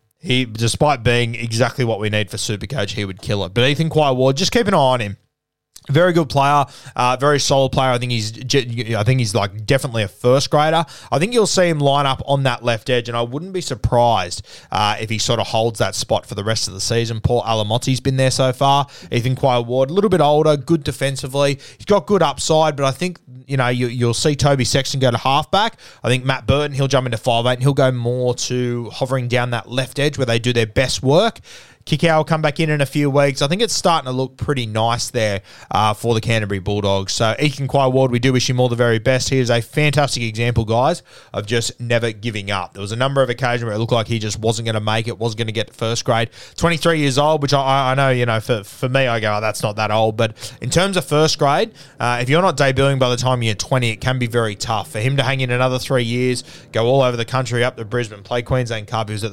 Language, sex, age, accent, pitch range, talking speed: English, male, 20-39, Australian, 115-140 Hz, 265 wpm